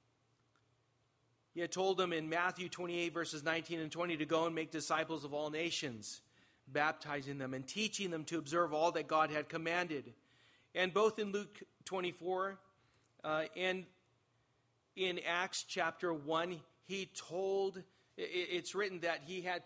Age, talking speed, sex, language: 40-59, 150 wpm, male, English